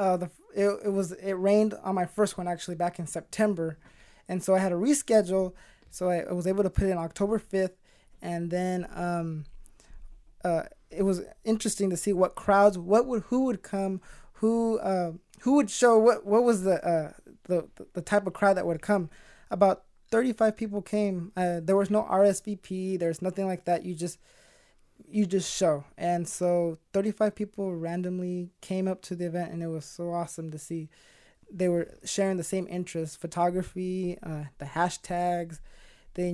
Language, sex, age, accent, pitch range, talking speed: English, male, 20-39, American, 170-200 Hz, 185 wpm